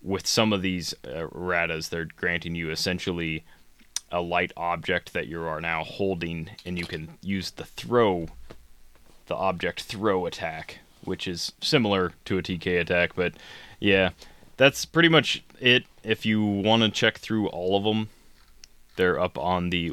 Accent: American